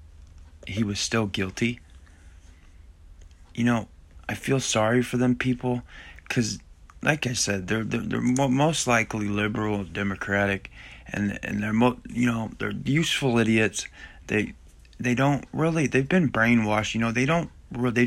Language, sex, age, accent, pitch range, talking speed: English, male, 20-39, American, 95-120 Hz, 150 wpm